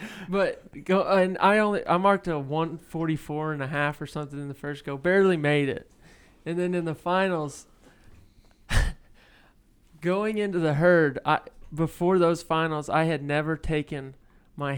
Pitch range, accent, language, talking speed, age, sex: 150-185 Hz, American, English, 165 wpm, 20-39, male